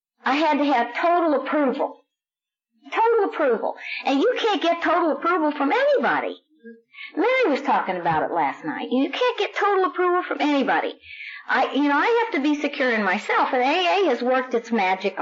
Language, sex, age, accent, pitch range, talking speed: English, female, 50-69, American, 215-340 Hz, 180 wpm